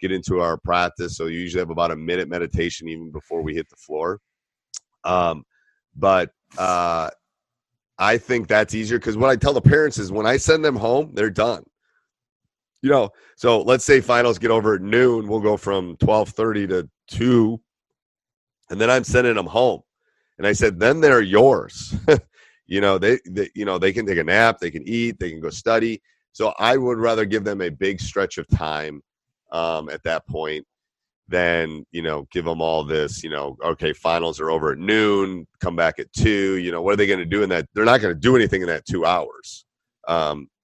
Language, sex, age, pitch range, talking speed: English, male, 30-49, 85-115 Hz, 205 wpm